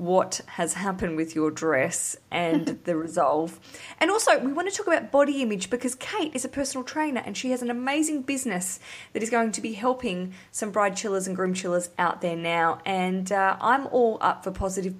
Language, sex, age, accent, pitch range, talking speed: English, female, 20-39, Australian, 170-240 Hz, 210 wpm